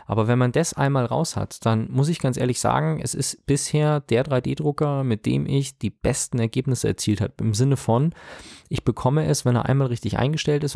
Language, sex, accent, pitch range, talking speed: German, male, German, 115-140 Hz, 210 wpm